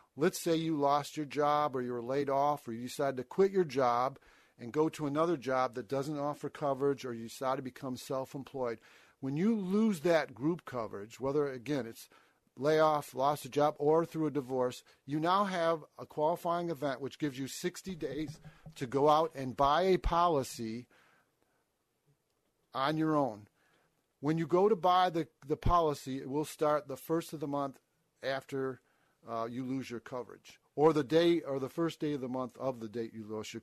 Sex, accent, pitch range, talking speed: male, American, 130-165 Hz, 195 wpm